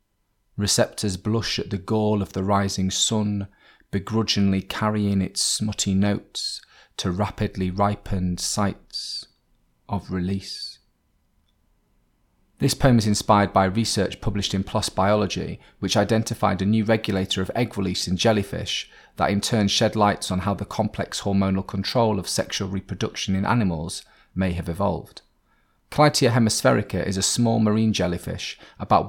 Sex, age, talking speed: male, 30-49, 140 wpm